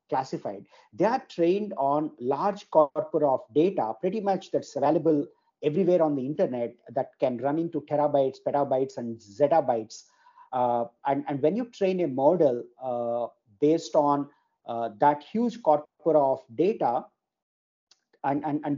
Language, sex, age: English, male, 50-69